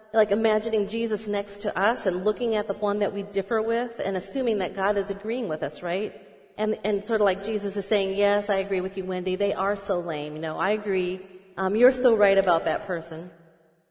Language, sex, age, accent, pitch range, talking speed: English, female, 40-59, American, 185-225 Hz, 230 wpm